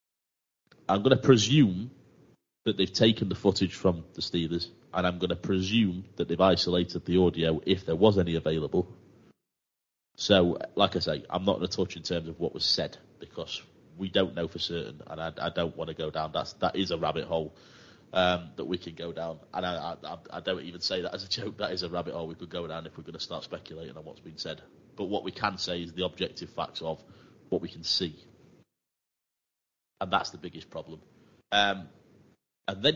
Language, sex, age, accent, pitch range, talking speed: English, male, 30-49, British, 85-100 Hz, 220 wpm